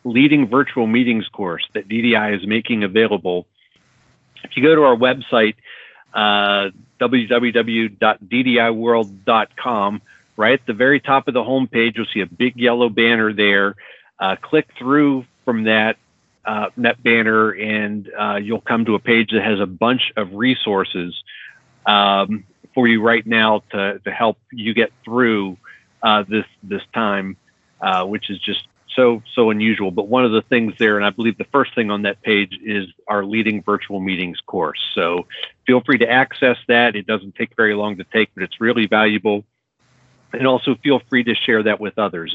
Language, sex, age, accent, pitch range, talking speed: English, male, 40-59, American, 105-120 Hz, 175 wpm